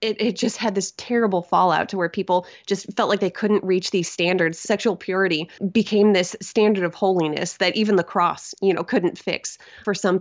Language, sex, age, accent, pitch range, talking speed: English, female, 20-39, American, 180-215 Hz, 205 wpm